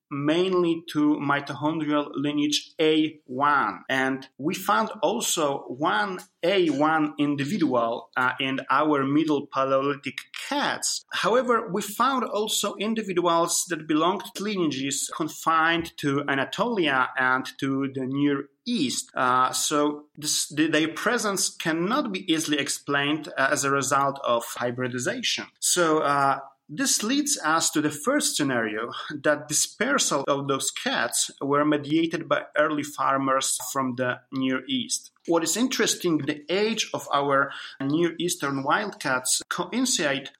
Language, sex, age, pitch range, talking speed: English, male, 30-49, 140-170 Hz, 120 wpm